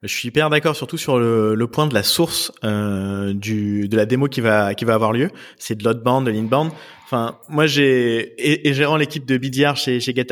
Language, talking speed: French, 235 wpm